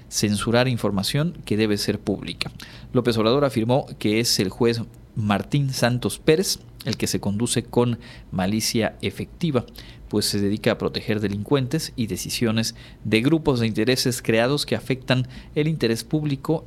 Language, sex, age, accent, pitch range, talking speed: Spanish, male, 40-59, Mexican, 105-125 Hz, 150 wpm